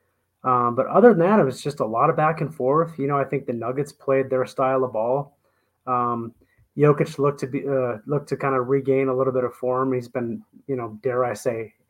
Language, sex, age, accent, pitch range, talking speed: English, male, 20-39, American, 120-145 Hz, 240 wpm